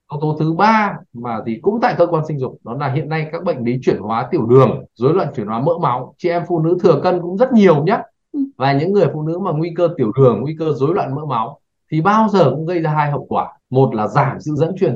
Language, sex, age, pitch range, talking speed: Vietnamese, male, 20-39, 130-175 Hz, 280 wpm